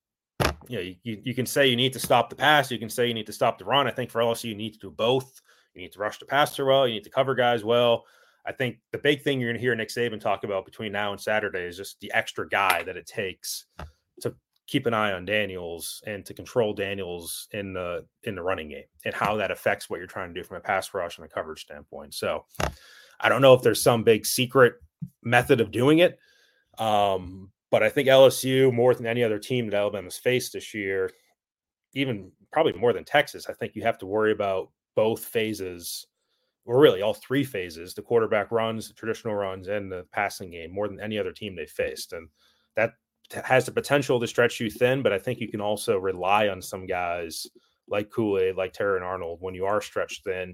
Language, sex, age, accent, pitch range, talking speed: English, male, 30-49, American, 105-140 Hz, 230 wpm